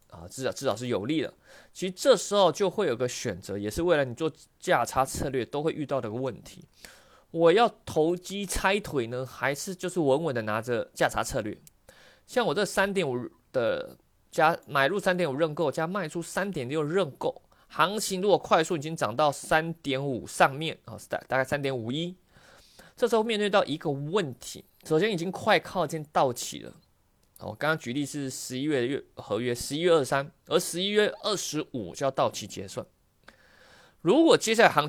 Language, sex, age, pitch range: Chinese, male, 20-39, 135-195 Hz